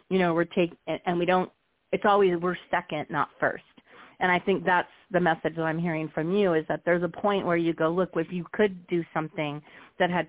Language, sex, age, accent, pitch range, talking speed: English, female, 40-59, American, 165-210 Hz, 245 wpm